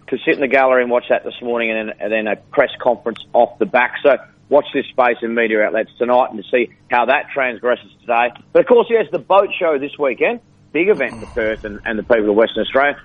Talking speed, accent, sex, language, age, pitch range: 240 wpm, Australian, male, English, 40-59, 125-160 Hz